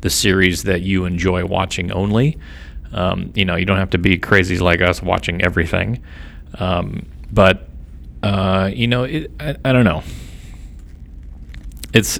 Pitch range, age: 85-100 Hz, 30-49